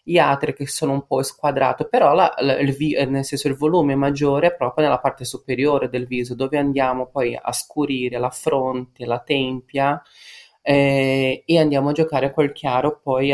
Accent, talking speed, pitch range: native, 180 wpm, 130-150 Hz